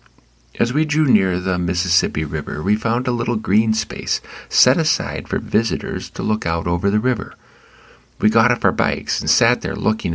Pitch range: 90-115 Hz